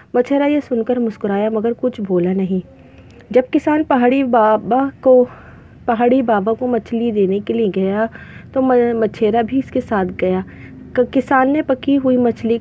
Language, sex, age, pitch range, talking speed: Urdu, female, 30-49, 205-250 Hz, 160 wpm